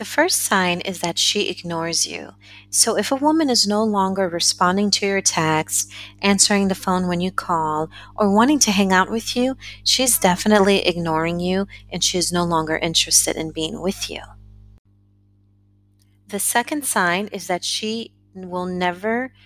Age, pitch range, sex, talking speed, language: 30-49, 150-190 Hz, female, 165 wpm, English